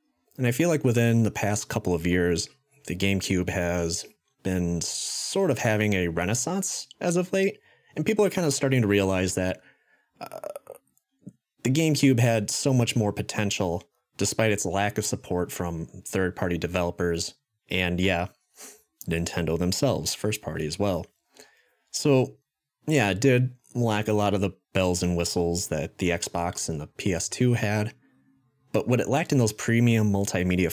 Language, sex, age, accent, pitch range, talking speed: English, male, 30-49, American, 90-130 Hz, 160 wpm